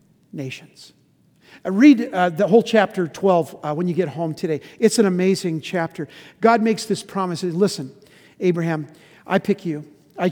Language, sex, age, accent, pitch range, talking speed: English, male, 50-69, American, 170-220 Hz, 155 wpm